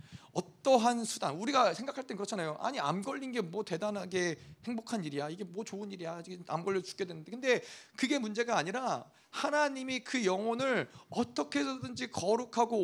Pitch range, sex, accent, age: 165-255 Hz, male, native, 40-59